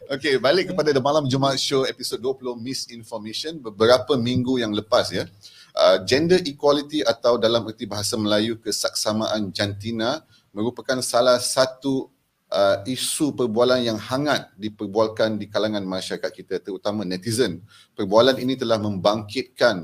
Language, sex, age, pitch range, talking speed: Malay, male, 30-49, 105-130 Hz, 135 wpm